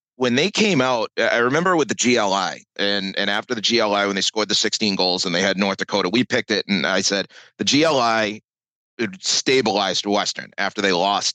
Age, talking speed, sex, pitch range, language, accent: 30-49, 200 wpm, male, 95-115 Hz, English, American